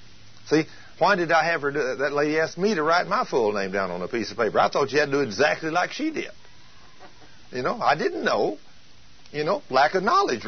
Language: English